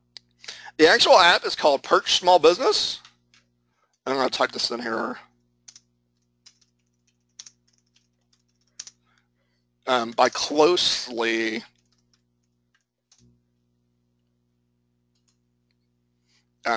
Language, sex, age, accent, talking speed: English, male, 40-59, American, 65 wpm